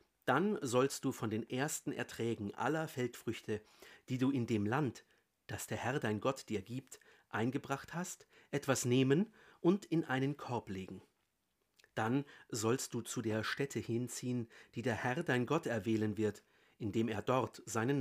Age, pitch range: 50-69, 110-140 Hz